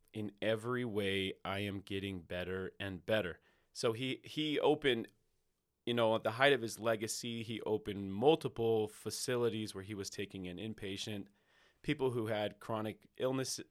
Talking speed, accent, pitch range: 160 wpm, American, 105-125 Hz